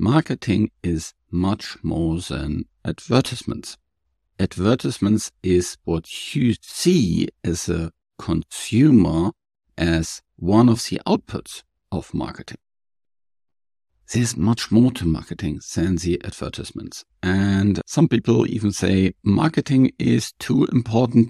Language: English